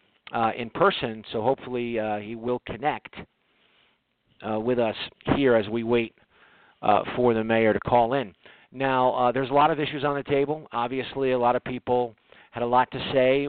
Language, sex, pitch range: English, male, 115-130 Hz